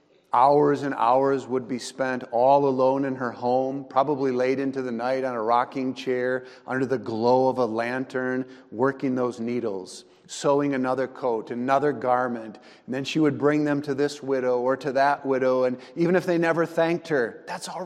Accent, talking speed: American, 190 wpm